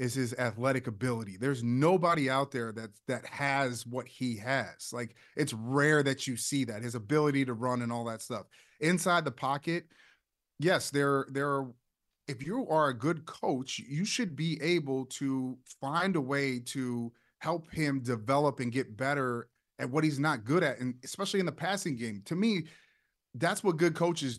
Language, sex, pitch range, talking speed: English, male, 130-170 Hz, 185 wpm